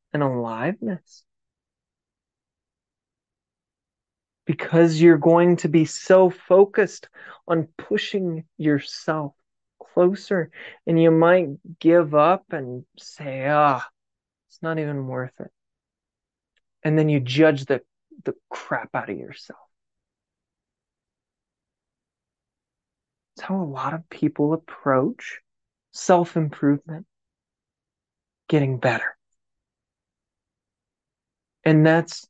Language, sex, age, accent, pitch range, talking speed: English, male, 20-39, American, 150-195 Hz, 85 wpm